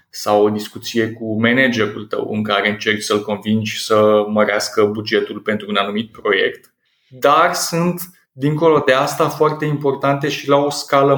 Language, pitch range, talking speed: Romanian, 115-135 Hz, 155 wpm